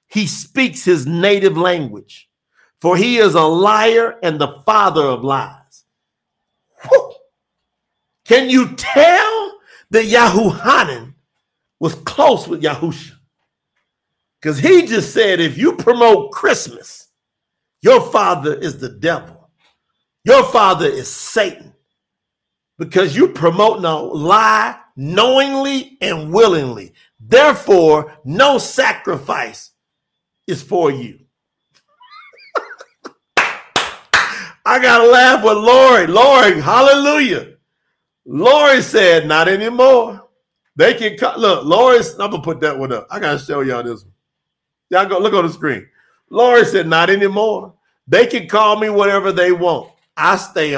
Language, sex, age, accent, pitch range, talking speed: English, male, 50-69, American, 165-255 Hz, 125 wpm